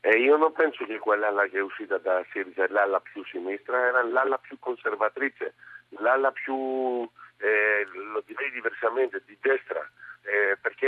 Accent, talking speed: native, 155 wpm